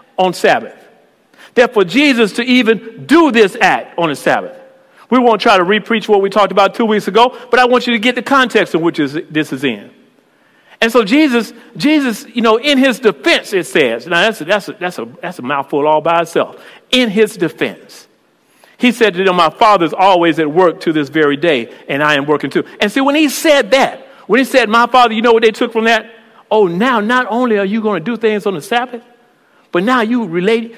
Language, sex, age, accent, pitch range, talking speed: English, male, 50-69, American, 205-265 Hz, 235 wpm